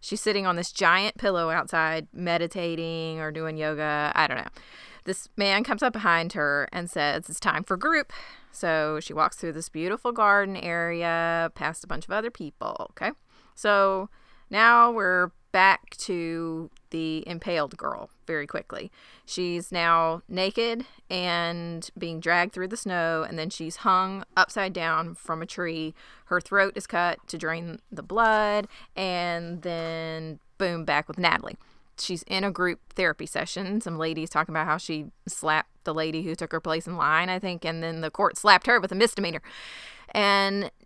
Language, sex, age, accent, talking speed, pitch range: English, female, 20-39, American, 170 wpm, 160-195 Hz